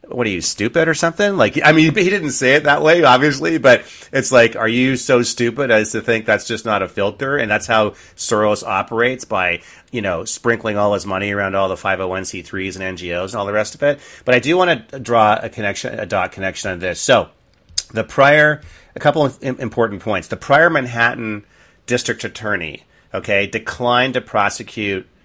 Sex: male